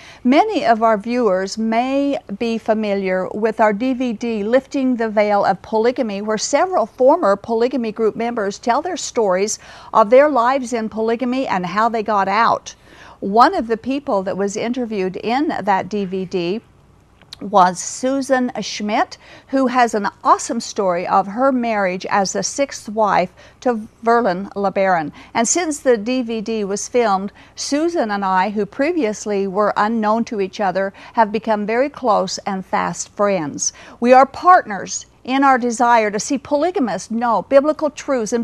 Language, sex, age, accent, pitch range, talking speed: English, female, 50-69, American, 210-260 Hz, 155 wpm